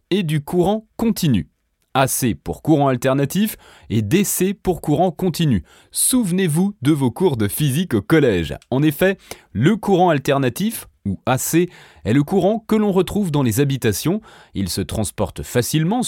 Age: 30-49